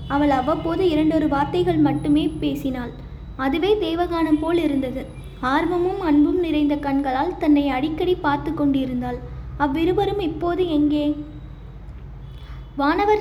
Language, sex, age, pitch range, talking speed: Tamil, female, 20-39, 290-340 Hz, 100 wpm